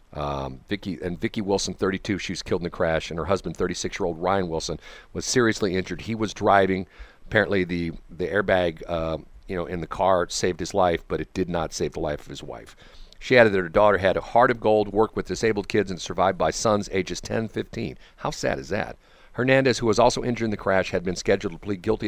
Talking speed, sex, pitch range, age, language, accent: 240 wpm, male, 90-110 Hz, 50-69, English, American